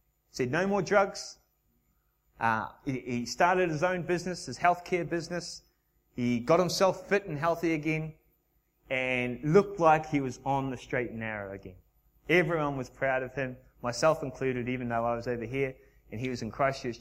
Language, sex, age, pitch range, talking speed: English, male, 20-39, 120-160 Hz, 175 wpm